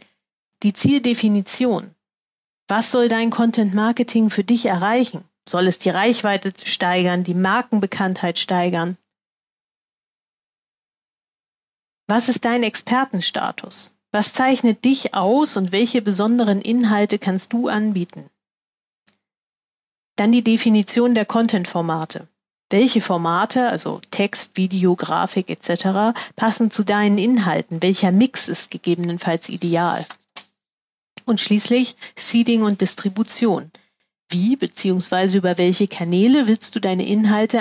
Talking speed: 110 wpm